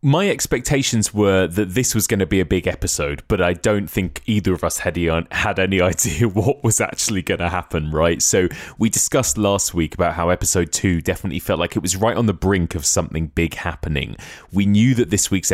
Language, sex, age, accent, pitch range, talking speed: English, male, 20-39, British, 80-105 Hz, 215 wpm